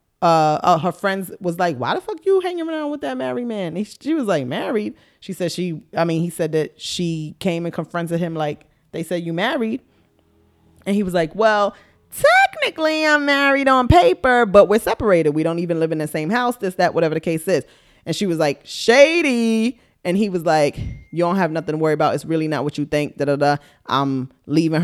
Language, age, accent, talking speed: English, 20-39, American, 225 wpm